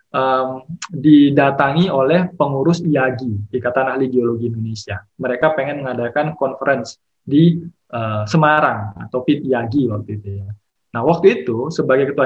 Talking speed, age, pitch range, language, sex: 130 wpm, 20-39, 125-160 Hz, Indonesian, male